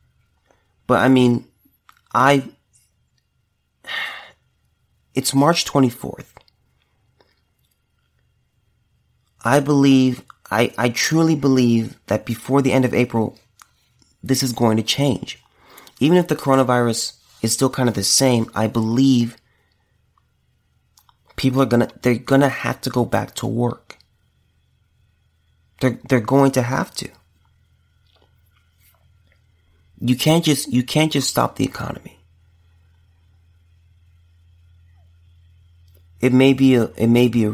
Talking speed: 115 wpm